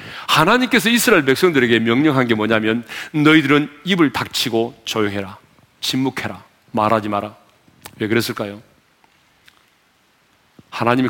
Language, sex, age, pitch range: Korean, male, 40-59, 110-155 Hz